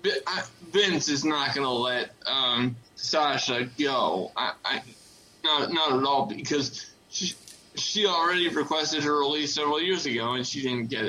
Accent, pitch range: American, 145-190 Hz